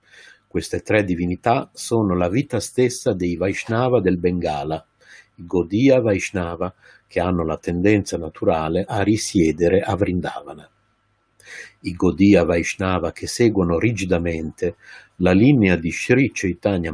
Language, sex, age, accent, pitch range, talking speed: Italian, male, 50-69, native, 90-120 Hz, 120 wpm